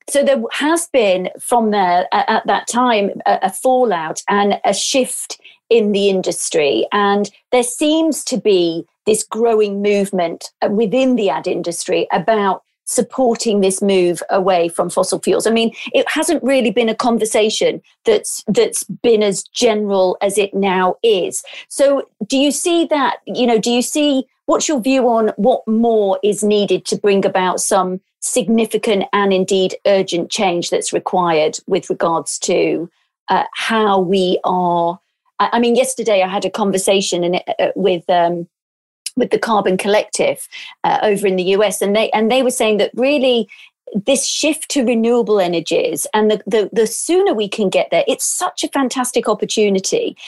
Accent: British